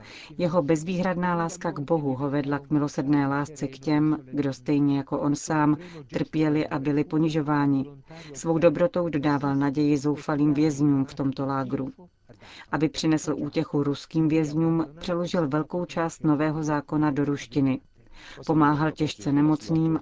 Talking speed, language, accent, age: 135 wpm, Czech, native, 40-59